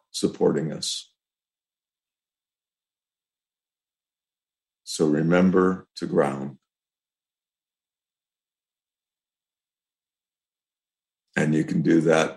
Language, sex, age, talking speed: English, male, 60-79, 55 wpm